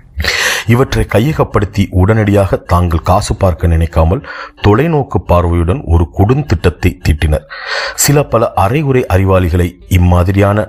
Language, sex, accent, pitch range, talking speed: Tamil, male, native, 85-105 Hz, 95 wpm